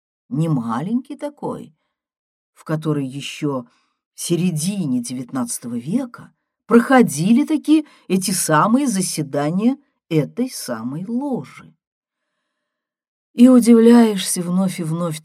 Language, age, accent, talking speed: Russian, 50-69, native, 90 wpm